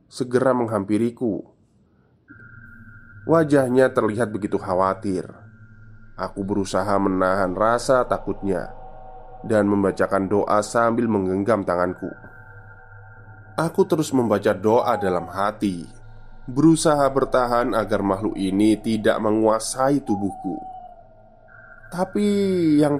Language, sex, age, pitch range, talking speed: Indonesian, male, 20-39, 100-125 Hz, 85 wpm